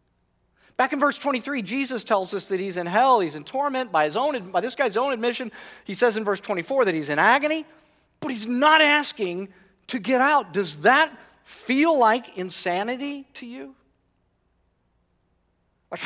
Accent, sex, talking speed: American, male, 170 wpm